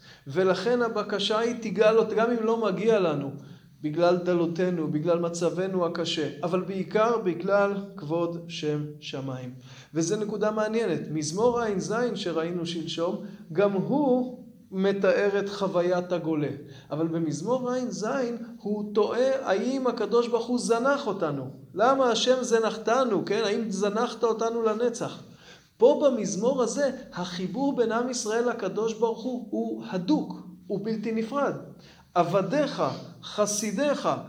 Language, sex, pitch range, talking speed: Hebrew, male, 180-235 Hz, 120 wpm